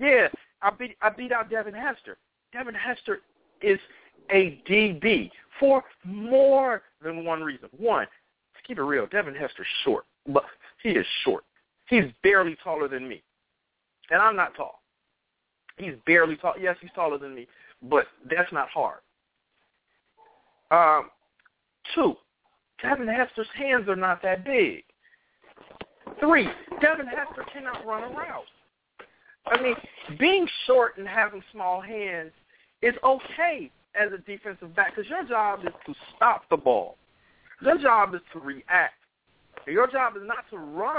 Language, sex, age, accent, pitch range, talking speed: English, male, 50-69, American, 190-295 Hz, 145 wpm